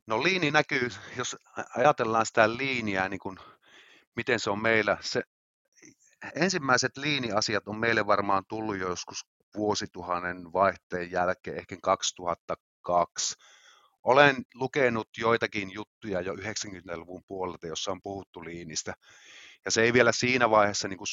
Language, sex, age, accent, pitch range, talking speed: Finnish, male, 30-49, native, 100-115 Hz, 130 wpm